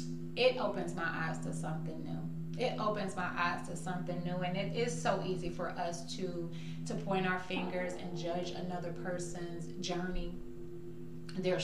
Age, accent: 30-49, American